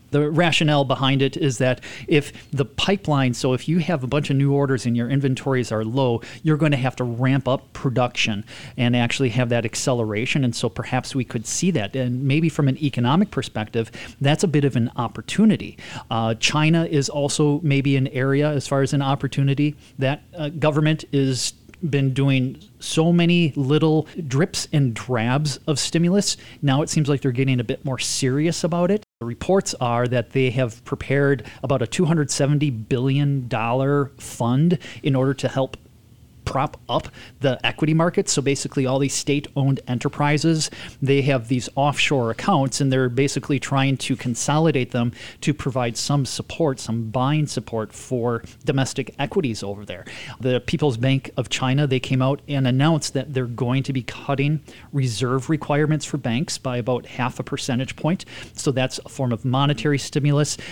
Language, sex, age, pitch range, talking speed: English, male, 30-49, 125-145 Hz, 175 wpm